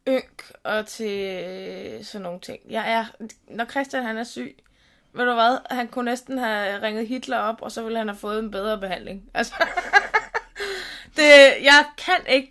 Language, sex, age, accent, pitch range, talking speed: Danish, female, 20-39, native, 230-290 Hz, 140 wpm